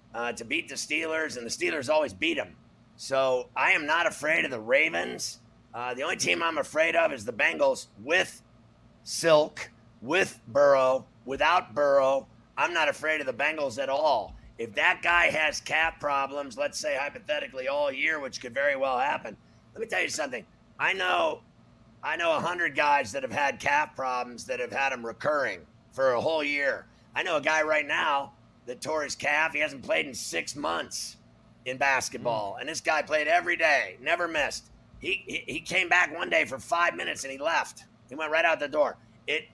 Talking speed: 195 wpm